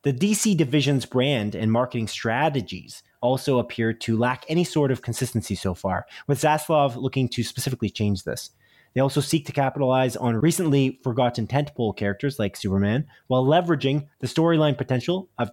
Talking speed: 160 wpm